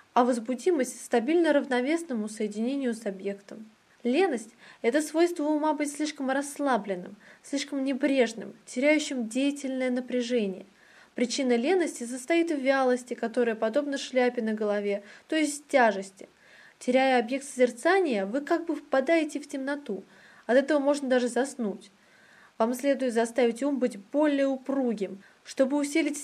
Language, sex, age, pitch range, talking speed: Russian, female, 20-39, 230-290 Hz, 125 wpm